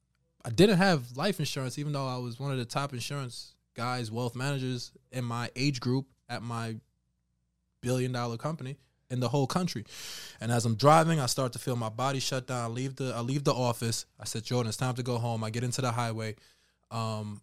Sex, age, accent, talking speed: male, 20-39, American, 205 wpm